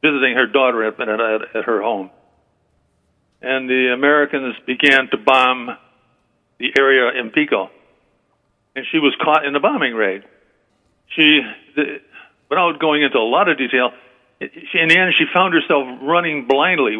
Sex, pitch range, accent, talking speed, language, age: male, 130-165 Hz, American, 145 wpm, English, 50-69